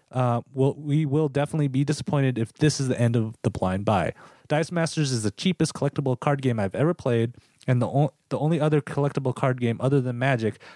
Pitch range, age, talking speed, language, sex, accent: 120-150 Hz, 30-49, 220 wpm, English, male, American